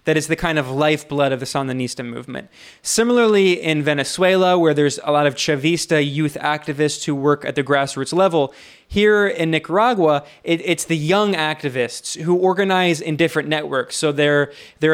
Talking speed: 170 wpm